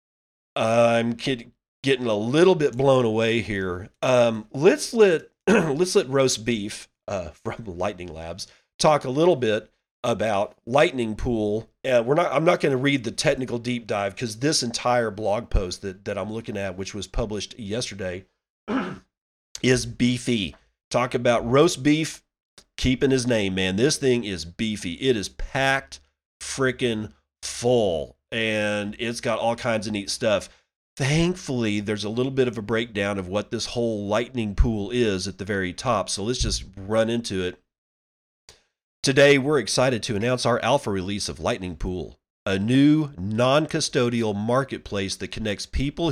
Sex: male